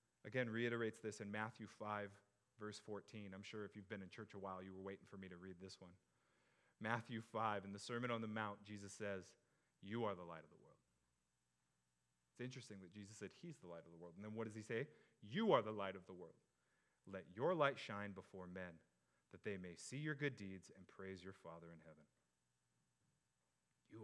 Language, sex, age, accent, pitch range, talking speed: English, male, 30-49, American, 90-120 Hz, 215 wpm